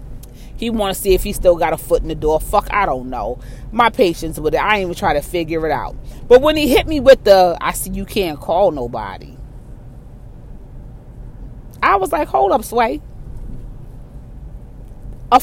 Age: 30-49